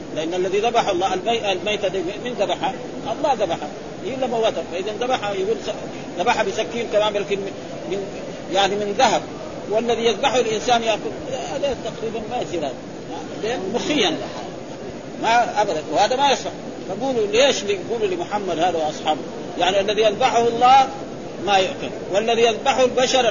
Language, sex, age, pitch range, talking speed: Arabic, male, 40-59, 200-250 Hz, 140 wpm